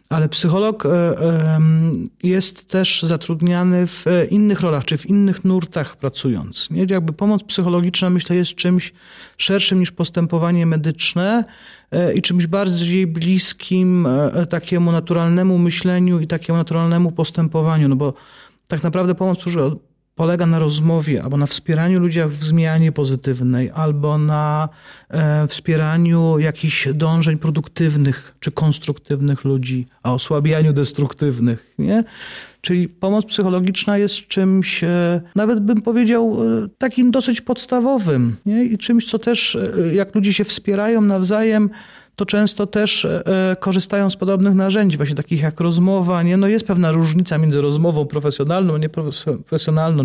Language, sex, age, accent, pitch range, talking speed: Polish, male, 40-59, native, 155-185 Hz, 120 wpm